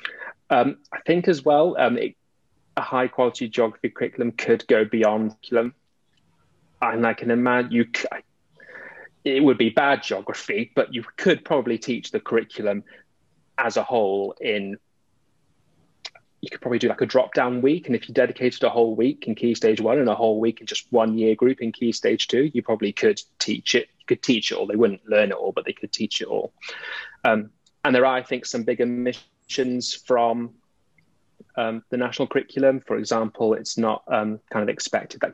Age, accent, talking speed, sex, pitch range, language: 30-49, British, 190 wpm, male, 110-125 Hz, English